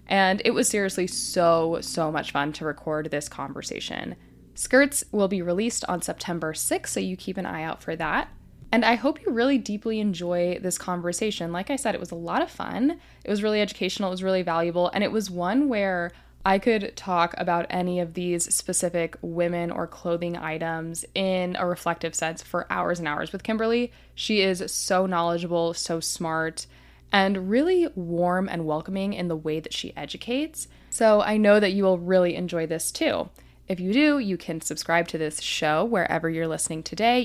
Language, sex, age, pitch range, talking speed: English, female, 10-29, 165-210 Hz, 195 wpm